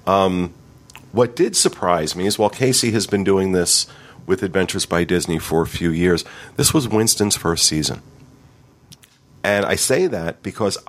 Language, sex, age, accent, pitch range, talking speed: English, male, 40-59, American, 95-130 Hz, 165 wpm